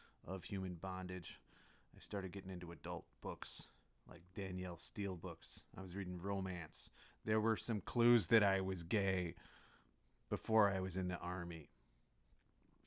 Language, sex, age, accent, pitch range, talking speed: English, male, 30-49, American, 90-105 Hz, 145 wpm